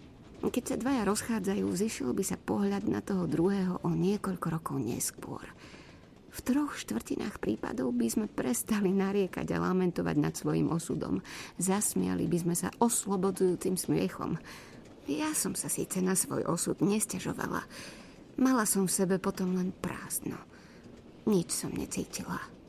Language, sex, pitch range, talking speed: Slovak, female, 175-215 Hz, 140 wpm